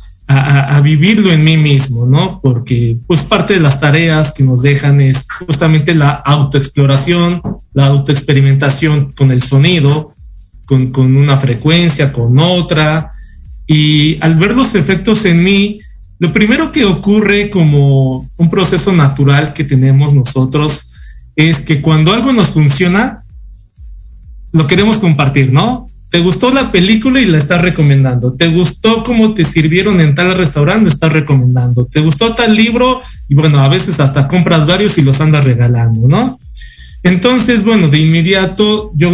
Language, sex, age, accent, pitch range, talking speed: Spanish, male, 40-59, Mexican, 135-180 Hz, 150 wpm